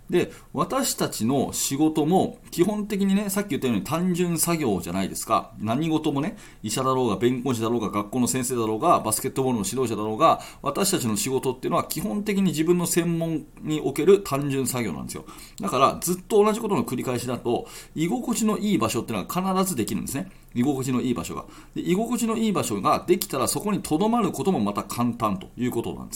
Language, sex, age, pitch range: Japanese, male, 40-59, 120-190 Hz